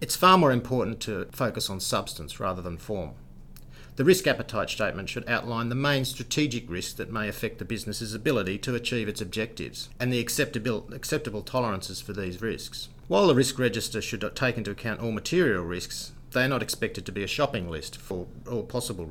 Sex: male